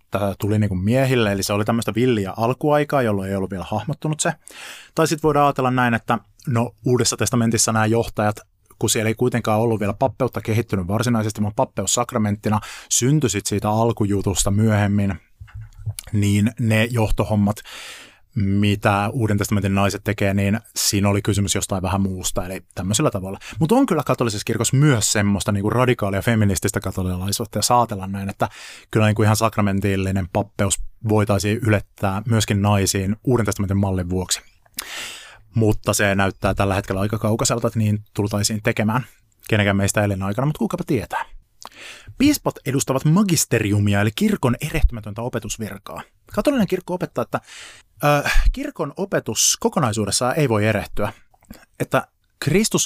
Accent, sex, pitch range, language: native, male, 100-125 Hz, Finnish